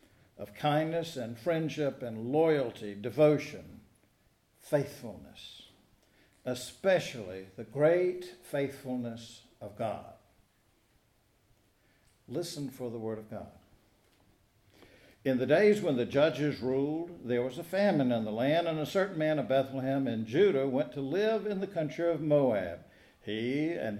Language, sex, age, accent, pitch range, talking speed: English, male, 60-79, American, 115-155 Hz, 130 wpm